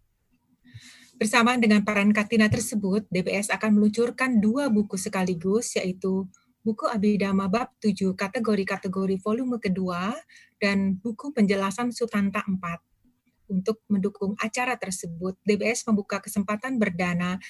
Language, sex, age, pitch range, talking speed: Indonesian, female, 30-49, 190-225 Hz, 110 wpm